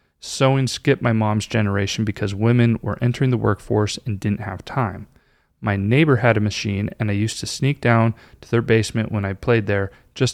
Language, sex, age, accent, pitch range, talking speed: English, male, 30-49, American, 105-120 Hz, 195 wpm